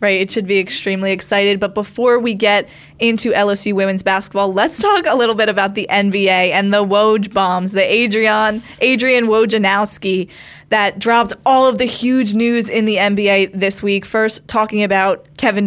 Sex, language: female, English